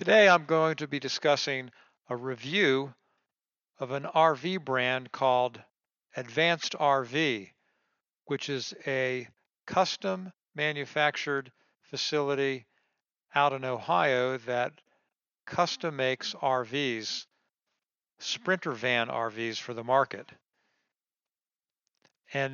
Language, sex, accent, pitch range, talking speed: English, male, American, 125-145 Hz, 95 wpm